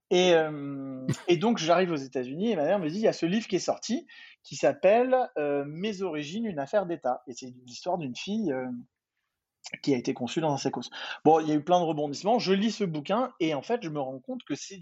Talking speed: 265 wpm